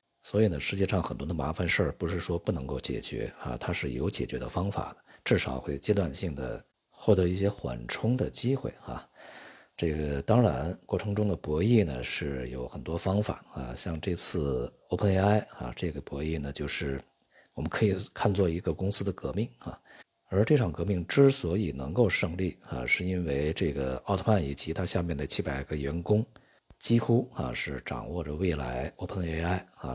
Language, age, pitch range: Chinese, 50-69, 70-95 Hz